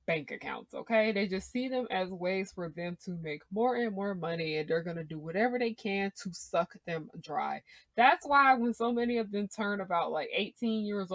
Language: English